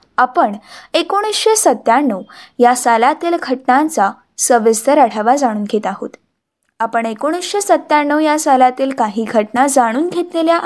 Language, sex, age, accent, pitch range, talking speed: Marathi, female, 20-39, native, 240-330 Hz, 70 wpm